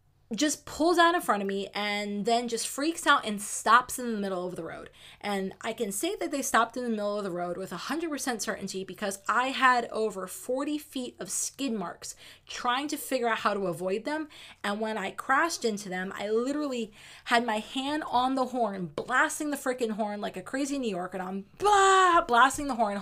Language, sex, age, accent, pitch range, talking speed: English, female, 20-39, American, 200-255 Hz, 210 wpm